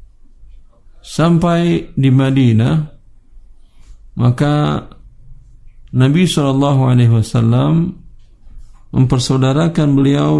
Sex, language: male, Indonesian